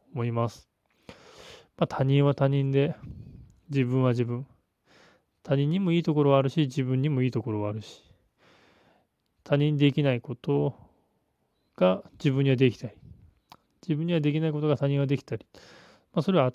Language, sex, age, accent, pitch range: Japanese, male, 20-39, native, 130-155 Hz